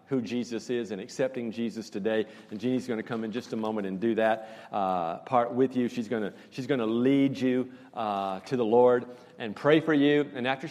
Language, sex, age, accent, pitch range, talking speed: English, male, 50-69, American, 110-135 Hz, 220 wpm